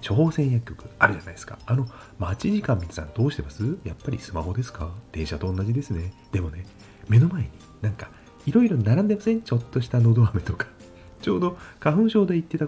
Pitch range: 100-150 Hz